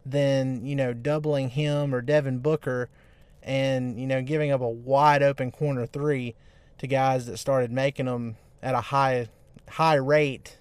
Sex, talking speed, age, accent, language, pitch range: male, 165 wpm, 30-49, American, English, 130-155 Hz